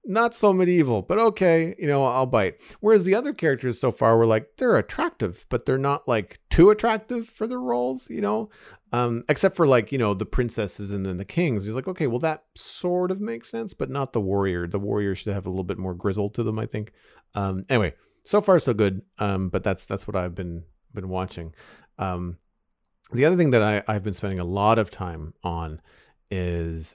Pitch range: 95-130 Hz